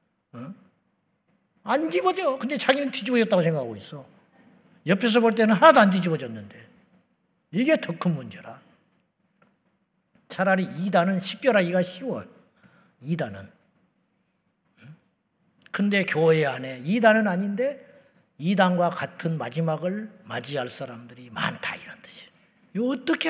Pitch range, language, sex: 180-250 Hz, Korean, male